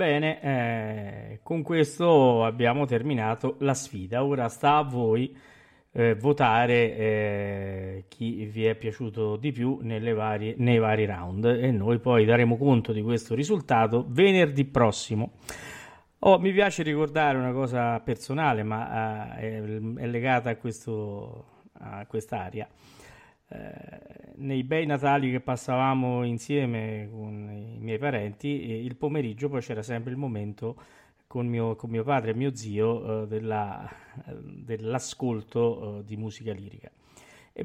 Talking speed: 125 wpm